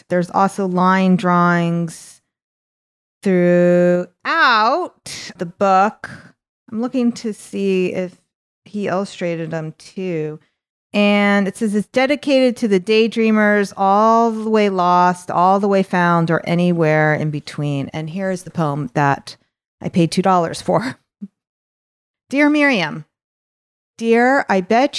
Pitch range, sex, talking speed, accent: 175-220 Hz, female, 120 wpm, American